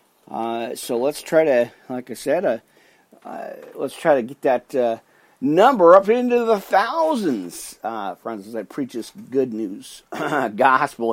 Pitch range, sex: 120-150 Hz, male